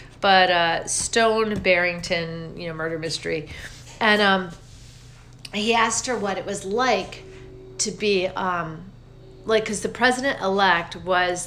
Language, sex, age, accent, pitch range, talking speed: English, female, 40-59, American, 160-215 Hz, 130 wpm